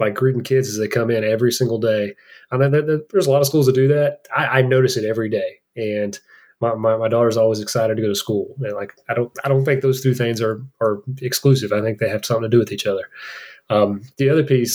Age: 30-49